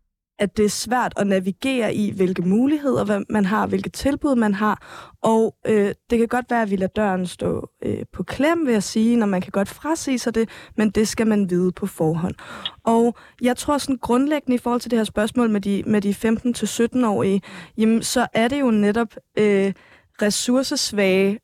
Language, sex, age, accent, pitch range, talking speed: Danish, female, 20-39, native, 200-240 Hz, 200 wpm